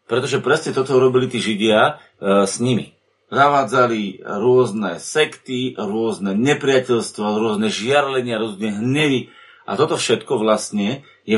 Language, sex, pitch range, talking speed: Slovak, male, 125-180 Hz, 120 wpm